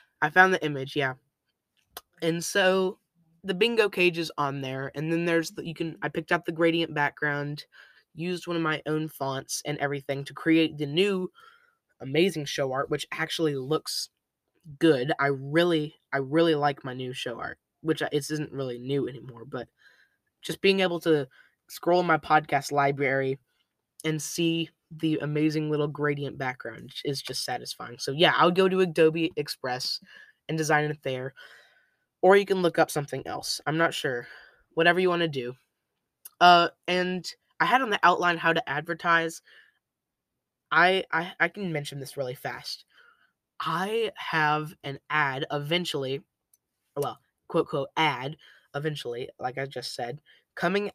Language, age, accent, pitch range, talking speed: English, 20-39, American, 140-170 Hz, 165 wpm